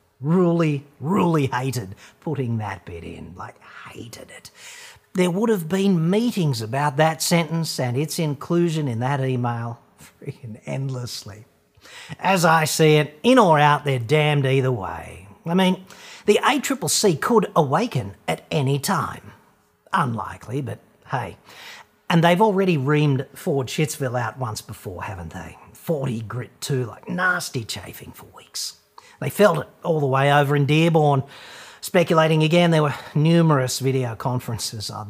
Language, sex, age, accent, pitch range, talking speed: English, male, 50-69, Australian, 125-175 Hz, 145 wpm